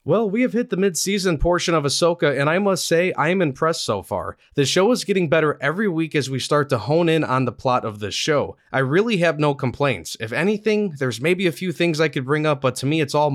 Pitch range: 130-175 Hz